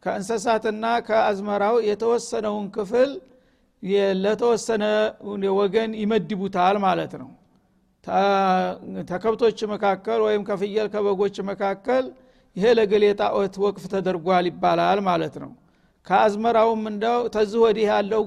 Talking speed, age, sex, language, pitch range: 90 wpm, 60-79, male, Amharic, 195-225 Hz